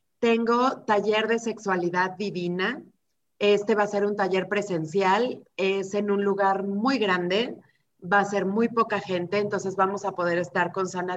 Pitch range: 175-205 Hz